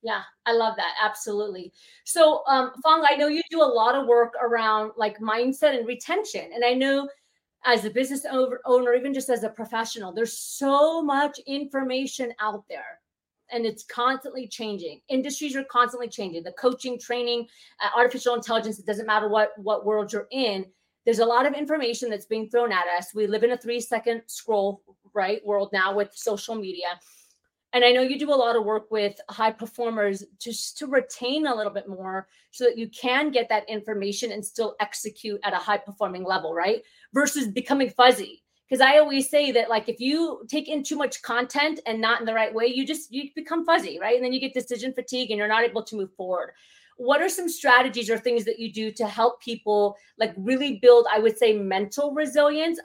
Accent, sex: American, female